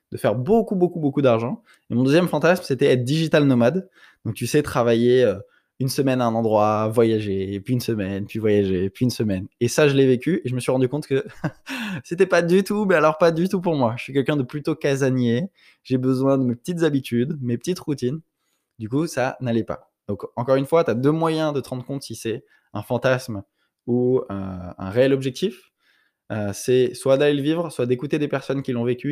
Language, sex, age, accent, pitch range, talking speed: French, male, 20-39, French, 110-140 Hz, 230 wpm